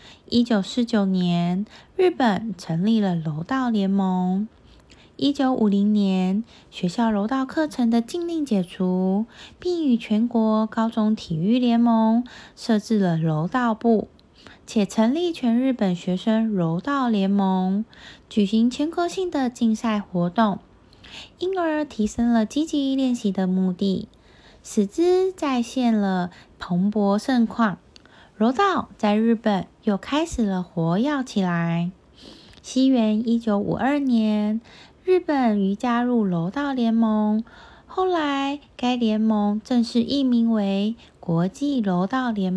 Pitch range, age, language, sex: 195-250 Hz, 20-39, Chinese, female